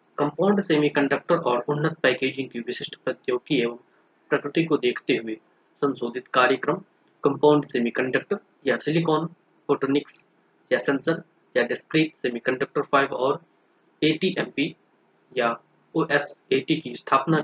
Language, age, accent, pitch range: Hindi, 20-39, native, 135-170 Hz